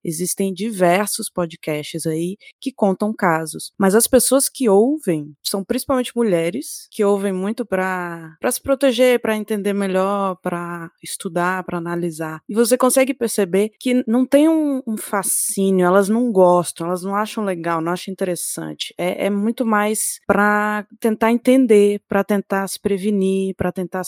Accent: Brazilian